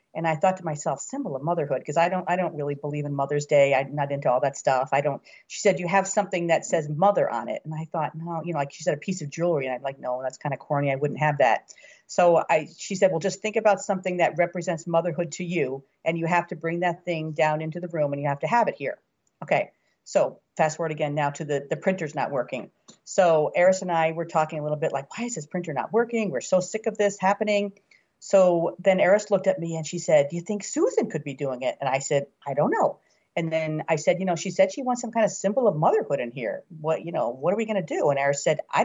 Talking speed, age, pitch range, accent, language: 280 wpm, 40-59, 155-190 Hz, American, English